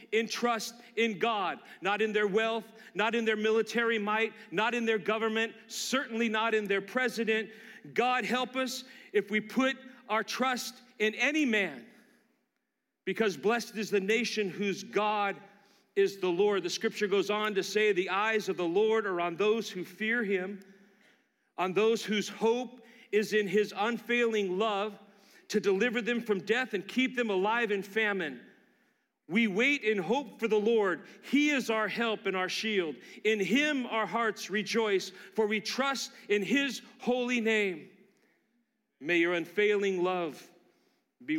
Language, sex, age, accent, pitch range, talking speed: English, male, 40-59, American, 195-235 Hz, 160 wpm